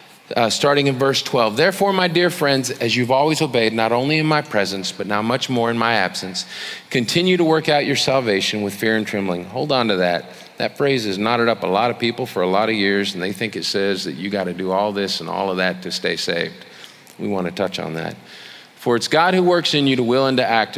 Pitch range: 100-130 Hz